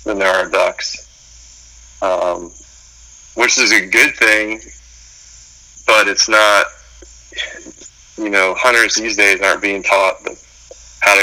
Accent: American